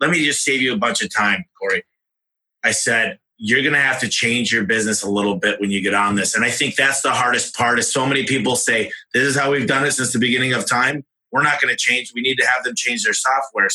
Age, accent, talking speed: 30-49, American, 280 wpm